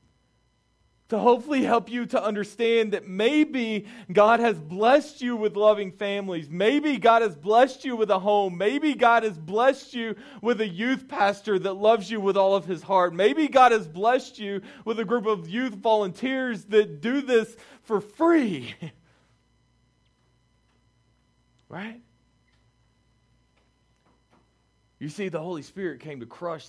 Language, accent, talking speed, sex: English, American, 145 wpm, male